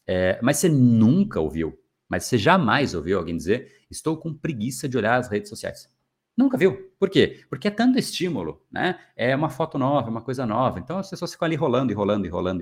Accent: Brazilian